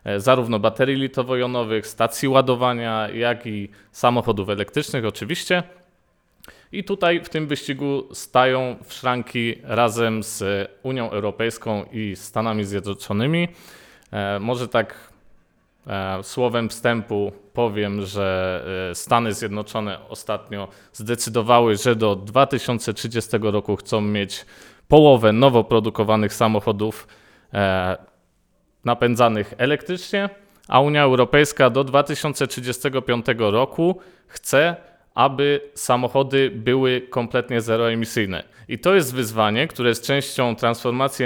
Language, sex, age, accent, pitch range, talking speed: Polish, male, 20-39, native, 105-135 Hz, 95 wpm